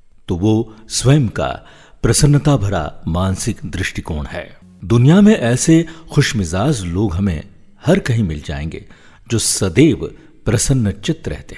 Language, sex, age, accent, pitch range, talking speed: Hindi, male, 50-69, native, 95-135 Hz, 120 wpm